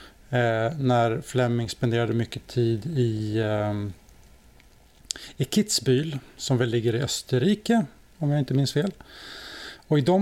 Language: Swedish